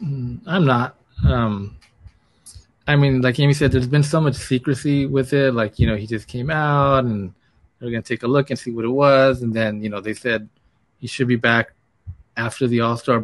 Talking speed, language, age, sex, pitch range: 215 wpm, English, 20-39, male, 110-130 Hz